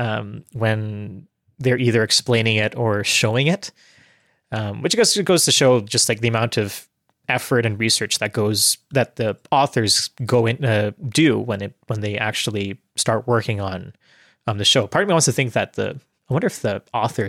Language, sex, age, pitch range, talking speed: English, male, 20-39, 110-130 Hz, 195 wpm